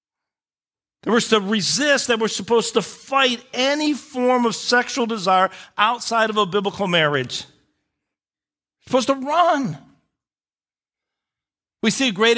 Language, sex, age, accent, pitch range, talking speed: English, male, 50-69, American, 180-225 Hz, 125 wpm